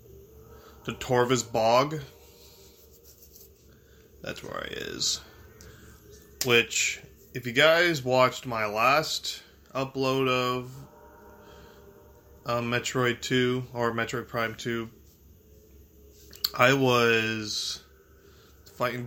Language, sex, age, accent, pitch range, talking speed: English, male, 20-39, American, 110-140 Hz, 80 wpm